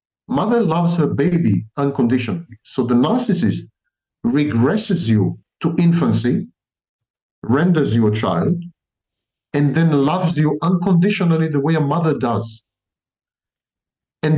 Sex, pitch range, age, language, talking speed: male, 135-195 Hz, 50-69, Hebrew, 115 wpm